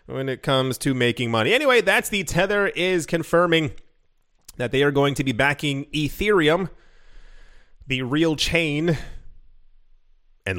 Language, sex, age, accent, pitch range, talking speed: English, male, 30-49, American, 145-185 Hz, 135 wpm